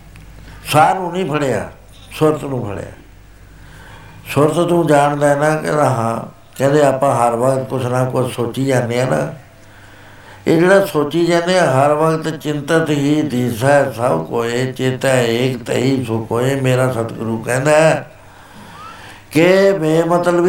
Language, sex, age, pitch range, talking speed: Punjabi, male, 60-79, 115-155 Hz, 130 wpm